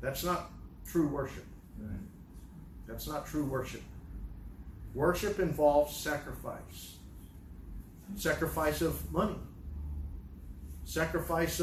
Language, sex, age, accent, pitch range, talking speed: English, male, 40-59, American, 145-200 Hz, 75 wpm